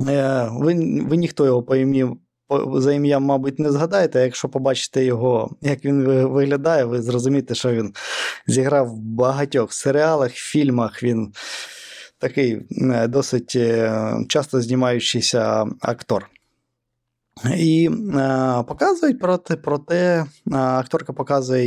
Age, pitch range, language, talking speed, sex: 20-39, 125-150 Hz, Ukrainian, 115 wpm, male